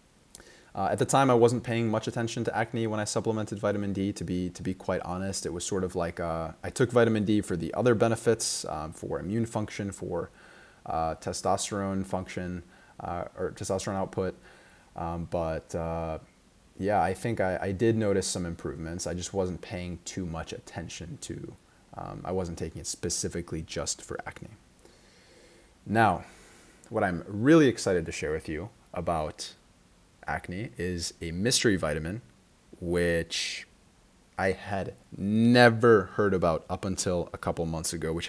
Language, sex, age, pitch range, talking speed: English, male, 20-39, 85-110 Hz, 165 wpm